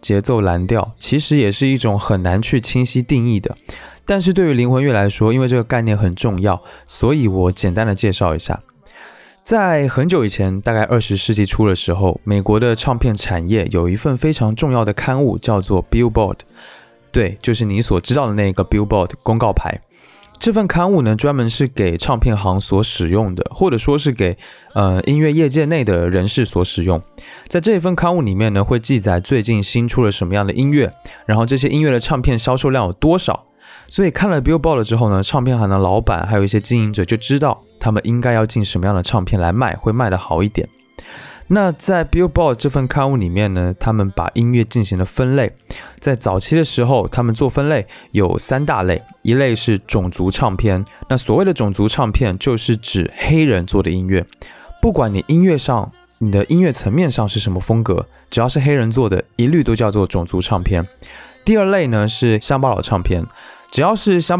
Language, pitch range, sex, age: Chinese, 100-135 Hz, male, 20-39